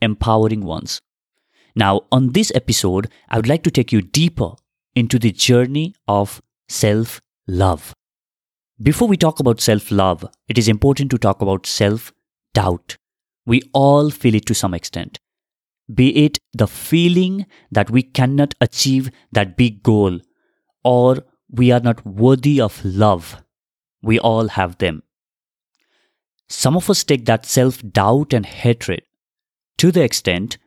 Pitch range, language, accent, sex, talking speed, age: 105-135 Hz, English, Indian, male, 135 wpm, 30-49